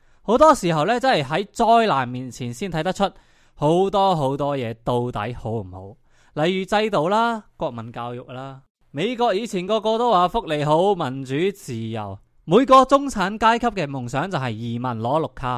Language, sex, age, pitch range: Chinese, male, 20-39, 125-195 Hz